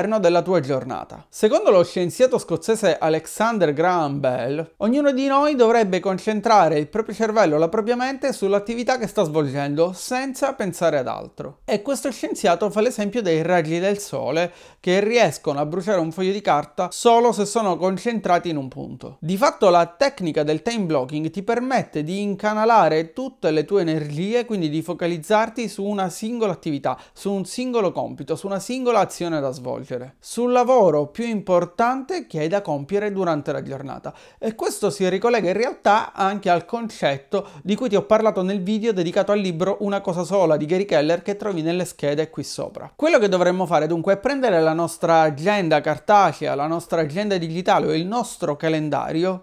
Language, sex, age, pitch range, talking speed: Italian, male, 30-49, 170-225 Hz, 175 wpm